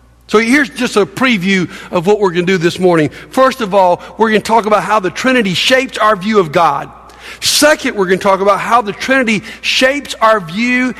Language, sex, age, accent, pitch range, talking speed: English, male, 60-79, American, 160-245 Hz, 225 wpm